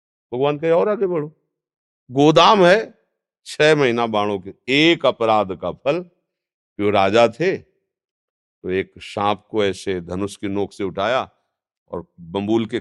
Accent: native